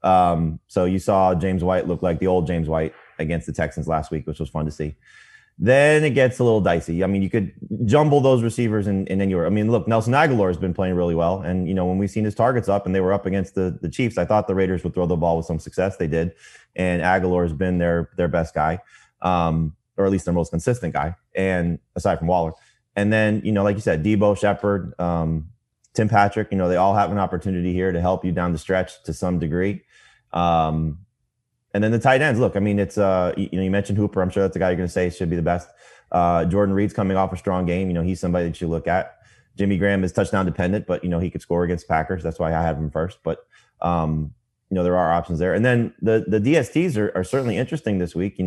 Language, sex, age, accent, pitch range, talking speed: English, male, 20-39, American, 85-110 Hz, 265 wpm